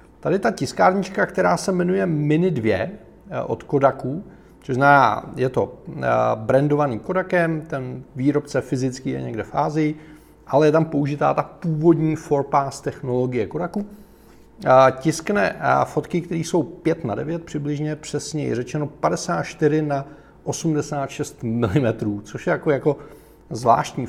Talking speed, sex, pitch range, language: 125 wpm, male, 130-155 Hz, Czech